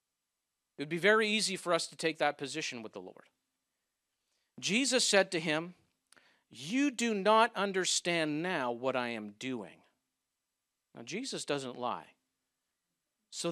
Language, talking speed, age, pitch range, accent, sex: English, 140 wpm, 50-69, 125-210 Hz, American, male